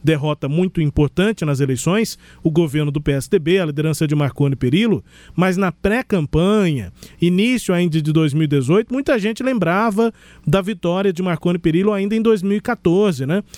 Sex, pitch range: male, 155-205 Hz